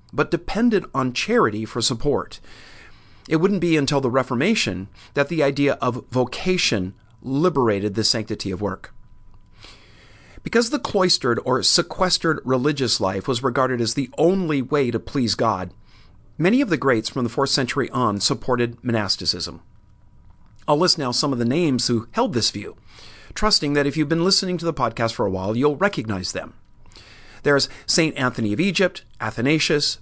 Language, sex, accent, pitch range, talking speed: English, male, American, 110-145 Hz, 165 wpm